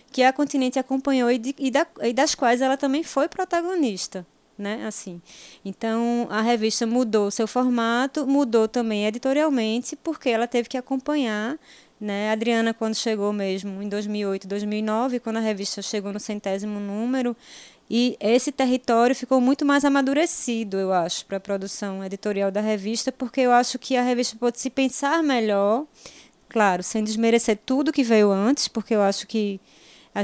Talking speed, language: 165 wpm, Portuguese